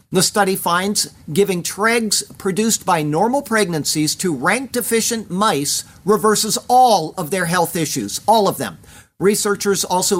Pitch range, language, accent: 160-210 Hz, English, American